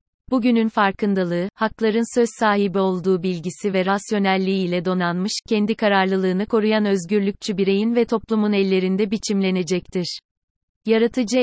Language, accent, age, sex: Turkish, native, 30-49, female